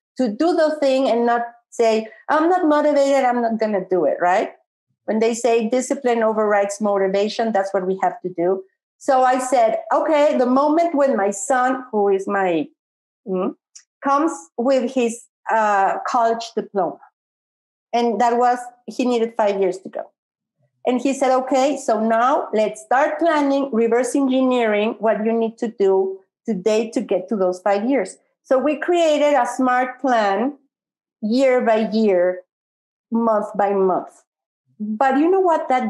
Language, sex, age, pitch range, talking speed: Spanish, female, 50-69, 210-275 Hz, 160 wpm